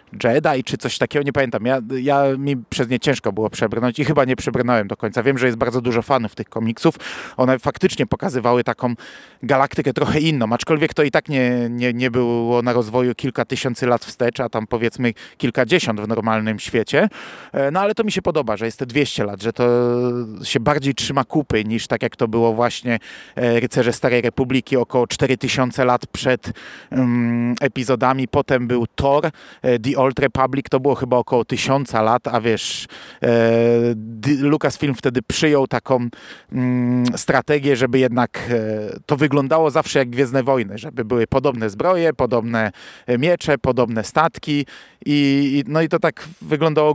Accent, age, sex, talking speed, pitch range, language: native, 30-49, male, 170 wpm, 120-145 Hz, Polish